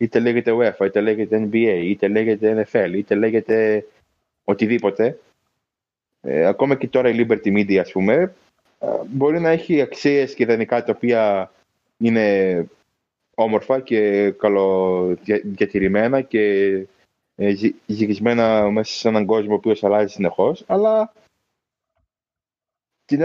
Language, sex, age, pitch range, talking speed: Greek, male, 20-39, 105-165 Hz, 120 wpm